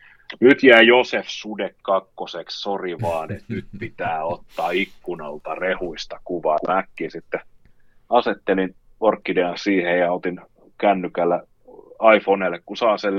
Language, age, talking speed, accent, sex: Finnish, 30-49, 120 wpm, native, male